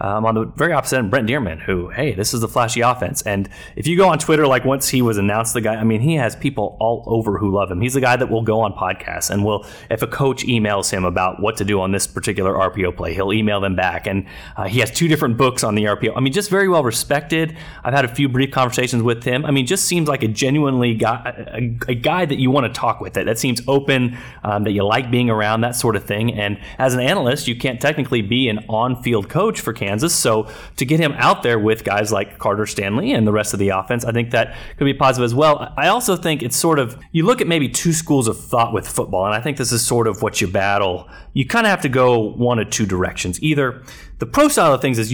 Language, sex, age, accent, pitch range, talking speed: English, male, 30-49, American, 105-140 Hz, 270 wpm